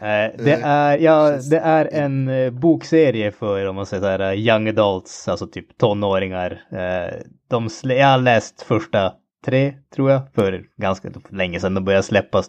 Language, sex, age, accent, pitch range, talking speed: Swedish, male, 20-39, Norwegian, 100-125 Hz, 160 wpm